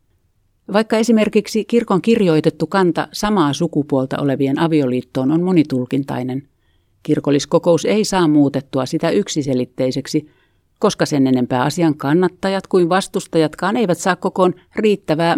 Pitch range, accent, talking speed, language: 130-170 Hz, native, 110 wpm, Finnish